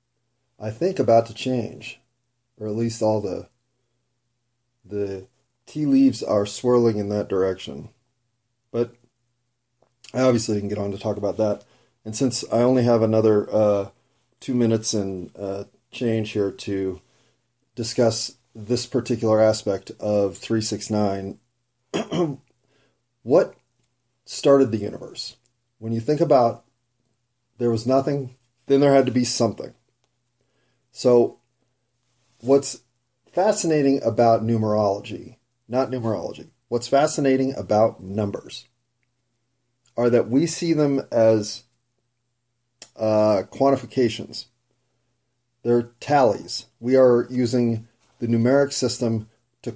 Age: 30-49